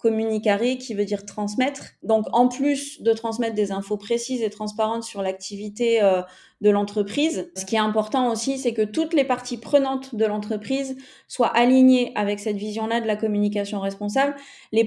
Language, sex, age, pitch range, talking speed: French, female, 30-49, 205-255 Hz, 175 wpm